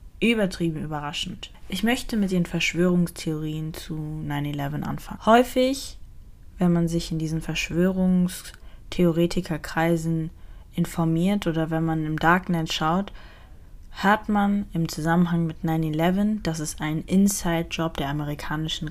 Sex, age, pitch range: female, 20-39, 155-180 Hz